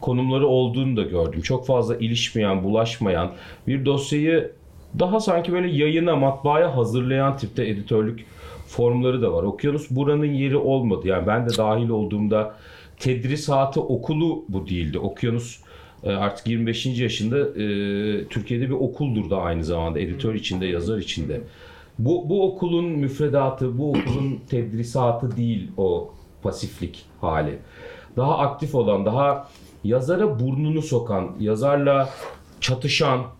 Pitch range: 105-140 Hz